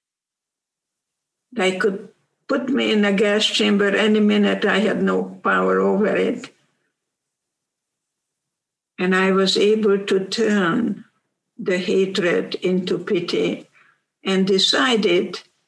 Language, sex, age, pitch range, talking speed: English, female, 60-79, 195-220 Hz, 105 wpm